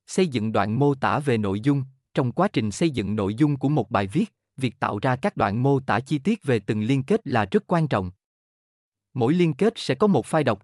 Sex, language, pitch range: male, Vietnamese, 110-155 Hz